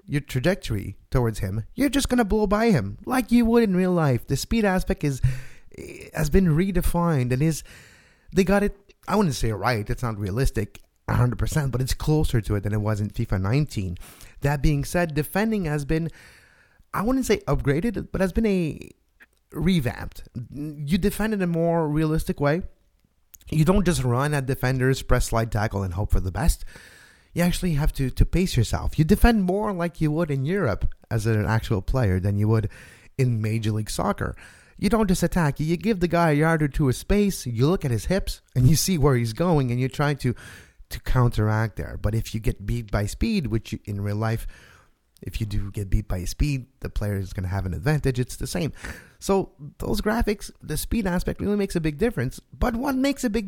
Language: English